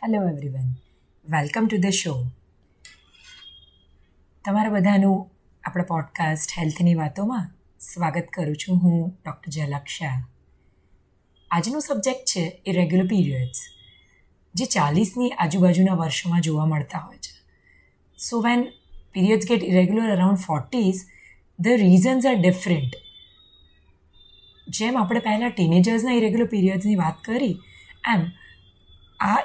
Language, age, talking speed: Gujarati, 30-49, 110 wpm